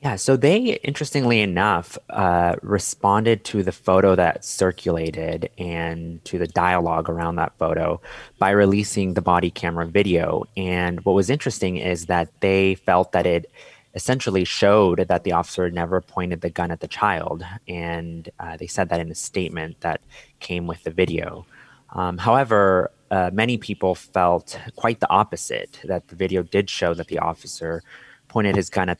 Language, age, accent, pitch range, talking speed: English, 20-39, American, 85-100 Hz, 170 wpm